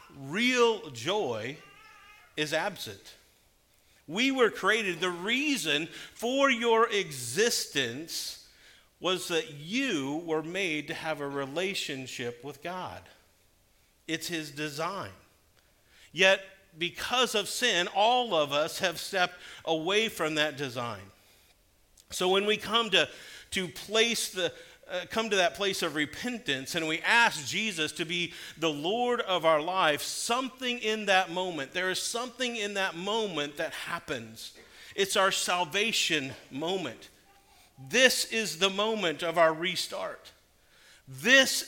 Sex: male